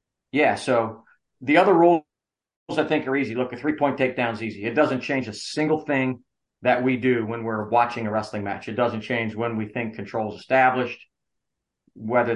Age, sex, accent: 40-59, male, American